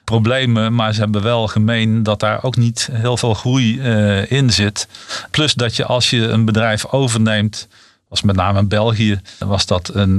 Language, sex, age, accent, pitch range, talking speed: Dutch, male, 40-59, Dutch, 105-120 Hz, 190 wpm